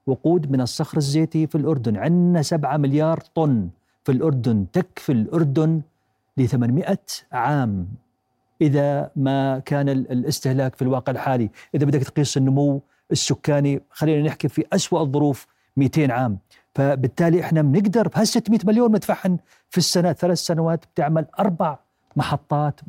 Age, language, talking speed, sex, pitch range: 50-69, Arabic, 130 wpm, male, 135-170 Hz